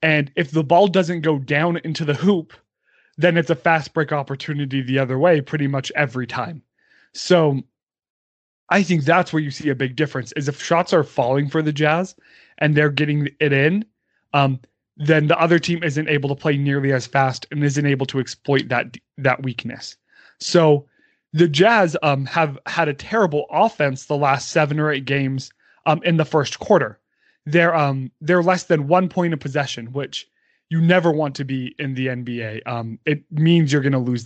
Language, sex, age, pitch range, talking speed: English, male, 20-39, 135-165 Hz, 195 wpm